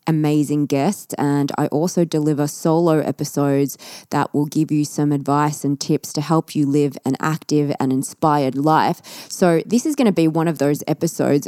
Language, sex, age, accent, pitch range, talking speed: English, female, 20-39, Australian, 140-165 Hz, 185 wpm